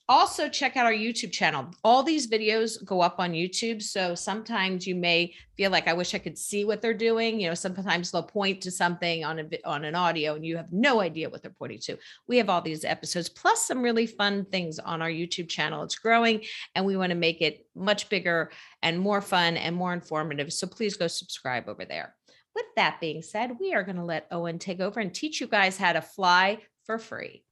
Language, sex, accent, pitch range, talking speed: English, female, American, 170-225 Hz, 225 wpm